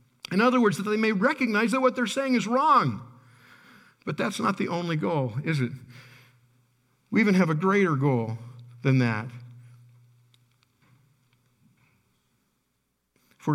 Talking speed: 135 wpm